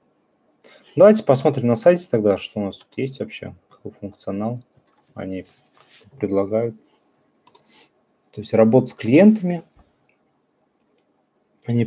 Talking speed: 100 wpm